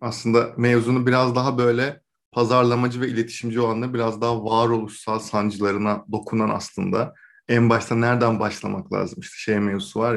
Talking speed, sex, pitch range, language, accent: 140 wpm, male, 110-120 Hz, Turkish, native